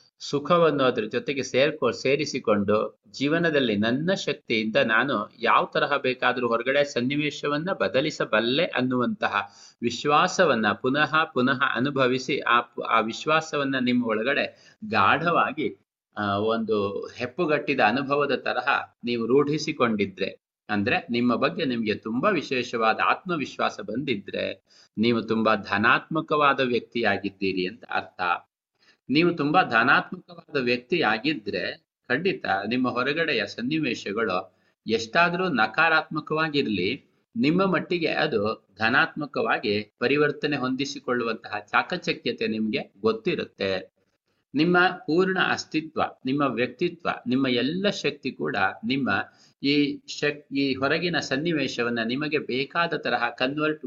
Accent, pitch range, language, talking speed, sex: native, 120-150 Hz, Kannada, 90 wpm, male